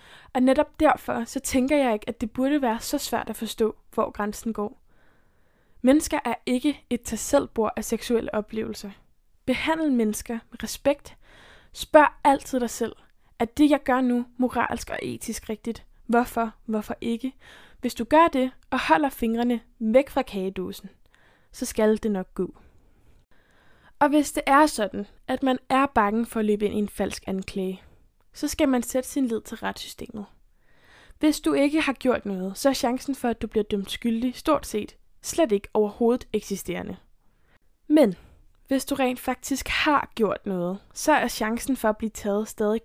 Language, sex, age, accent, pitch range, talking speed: Danish, female, 10-29, native, 215-265 Hz, 175 wpm